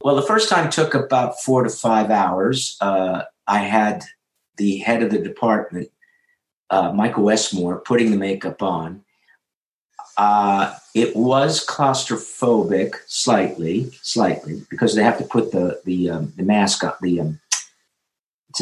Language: English